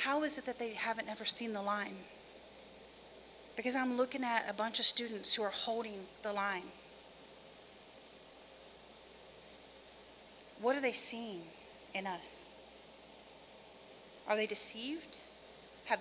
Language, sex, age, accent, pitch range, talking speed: English, female, 40-59, American, 200-240 Hz, 125 wpm